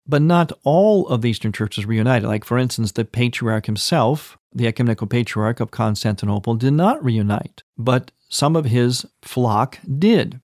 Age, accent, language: 40-59, American, English